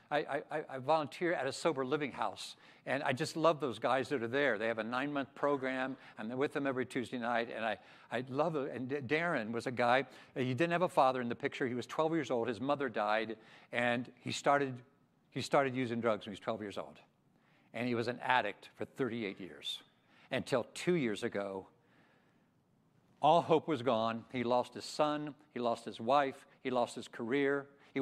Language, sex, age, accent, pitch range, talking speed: English, male, 60-79, American, 115-145 Hz, 210 wpm